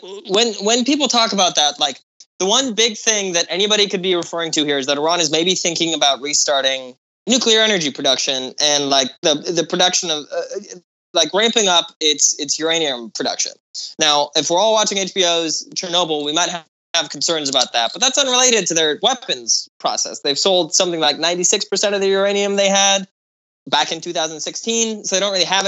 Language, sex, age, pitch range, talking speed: English, male, 20-39, 160-210 Hz, 190 wpm